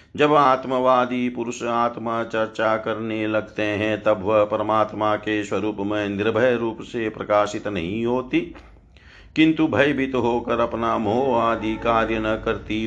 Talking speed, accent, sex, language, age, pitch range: 140 wpm, native, male, Hindi, 50-69, 110-125 Hz